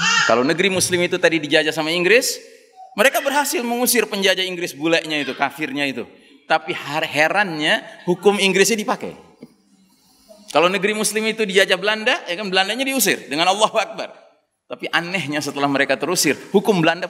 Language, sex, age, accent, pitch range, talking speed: Indonesian, male, 30-49, native, 160-250 Hz, 145 wpm